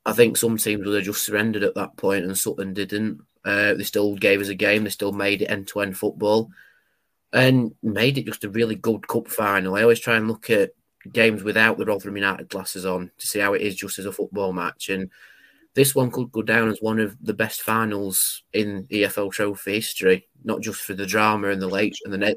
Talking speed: 225 wpm